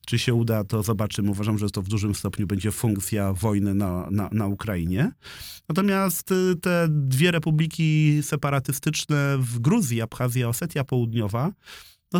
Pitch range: 105-120 Hz